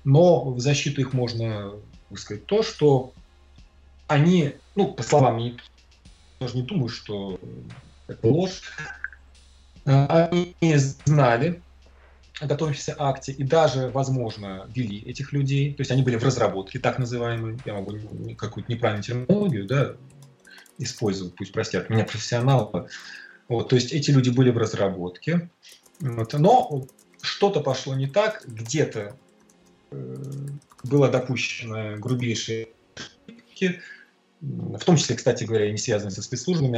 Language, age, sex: Russian, 30-49, male